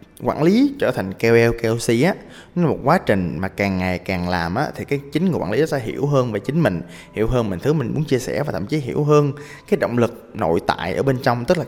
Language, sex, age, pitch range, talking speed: Vietnamese, male, 20-39, 105-155 Hz, 280 wpm